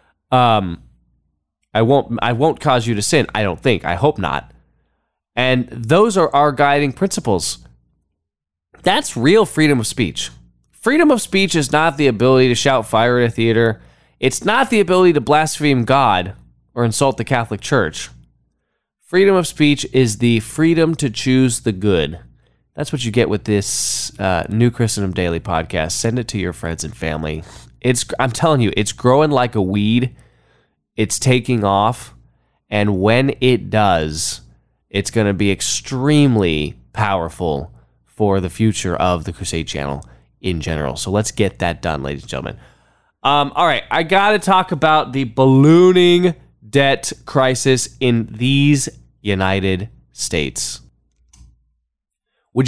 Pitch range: 90-140 Hz